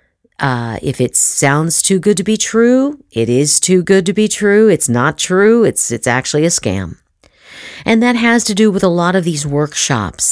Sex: female